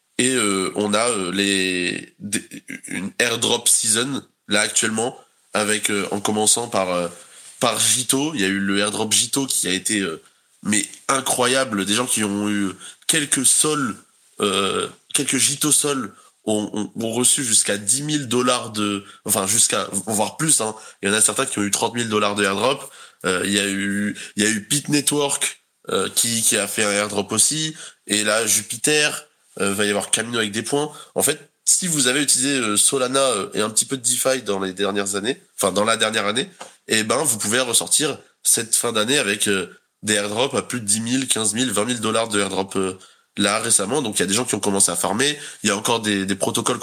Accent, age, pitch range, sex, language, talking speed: French, 20-39, 100-130 Hz, male, English, 210 wpm